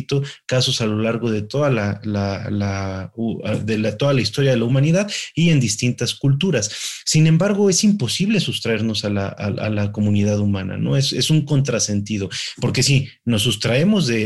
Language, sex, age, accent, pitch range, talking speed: Spanish, male, 30-49, Mexican, 110-140 Hz, 155 wpm